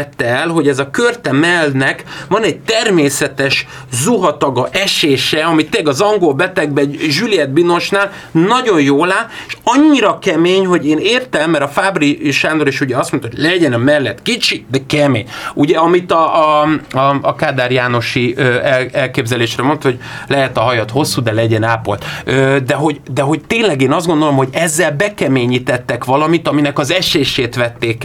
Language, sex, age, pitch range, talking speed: Hungarian, male, 30-49, 130-165 Hz, 165 wpm